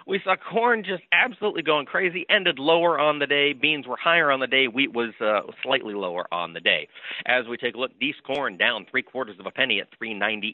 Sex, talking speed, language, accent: male, 235 wpm, English, American